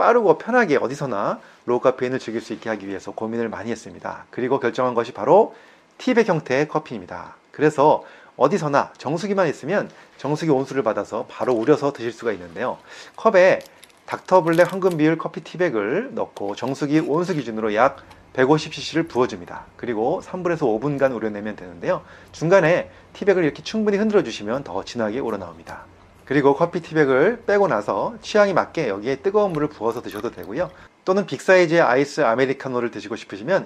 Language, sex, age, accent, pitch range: Korean, male, 30-49, native, 125-185 Hz